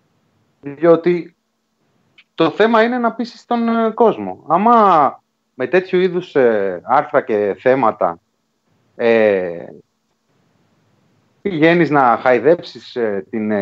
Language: Greek